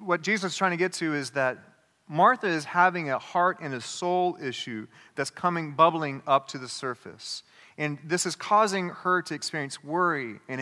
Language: English